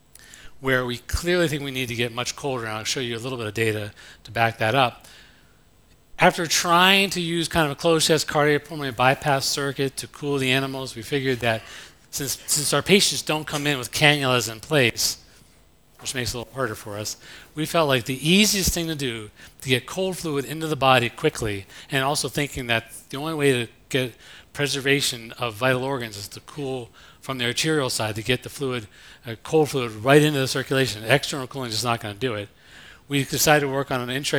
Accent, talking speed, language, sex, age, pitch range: American, 215 wpm, English, male, 40-59, 115-145 Hz